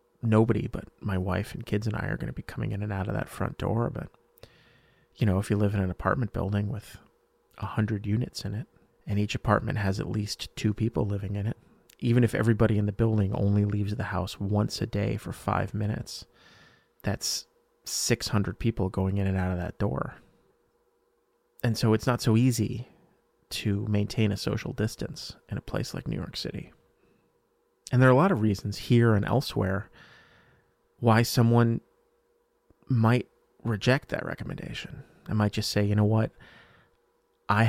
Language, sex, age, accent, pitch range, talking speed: English, male, 30-49, American, 100-120 Hz, 185 wpm